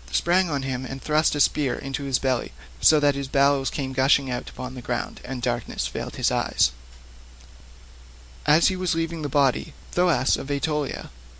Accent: American